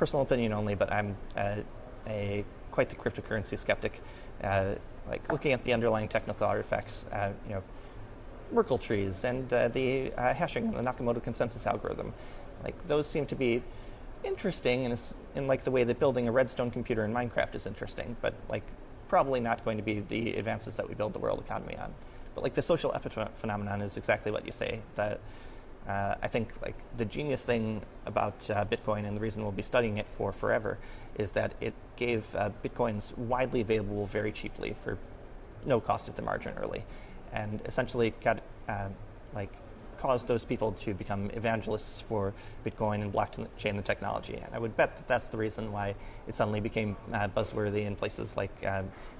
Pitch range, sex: 105-120 Hz, male